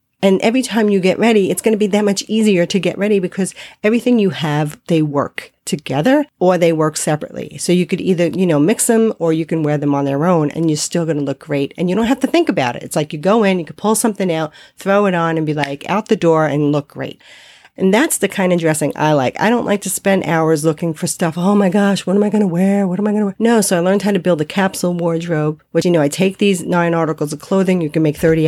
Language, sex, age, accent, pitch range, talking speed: English, female, 40-59, American, 160-200 Hz, 285 wpm